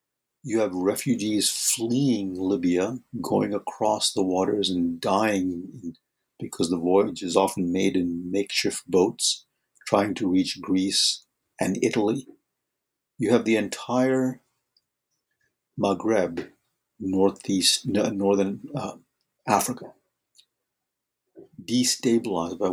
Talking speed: 95 wpm